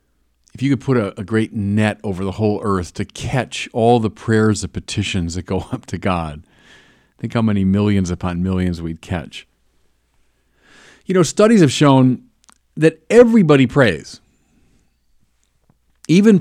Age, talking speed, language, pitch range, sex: 50-69, 150 wpm, English, 85-125 Hz, male